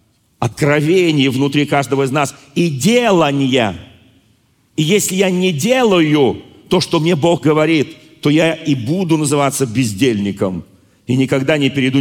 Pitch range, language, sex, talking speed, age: 110-145 Hz, Russian, male, 135 wpm, 40-59